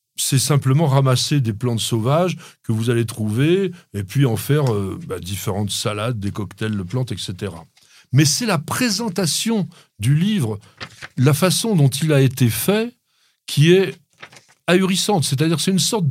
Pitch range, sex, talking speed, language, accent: 130-180 Hz, male, 165 wpm, French, French